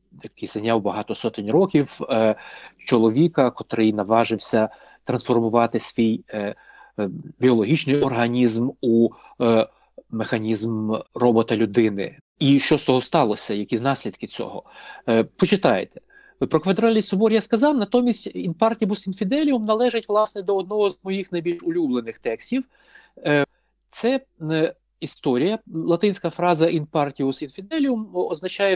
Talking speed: 100 wpm